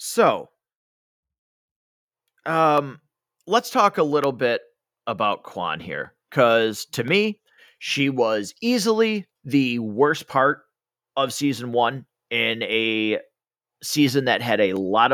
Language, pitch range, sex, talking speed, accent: English, 115-160 Hz, male, 115 wpm, American